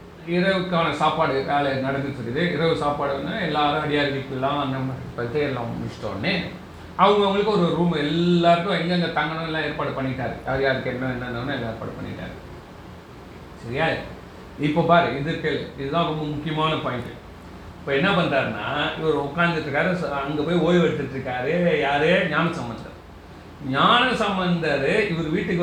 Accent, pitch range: native, 140-185 Hz